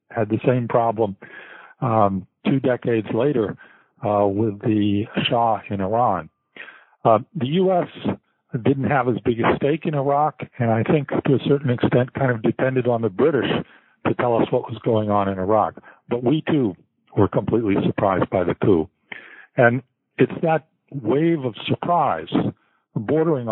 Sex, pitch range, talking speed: male, 105-135 Hz, 160 wpm